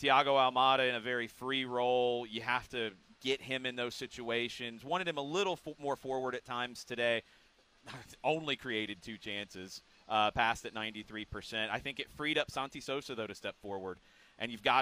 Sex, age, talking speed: male, 30-49, 190 wpm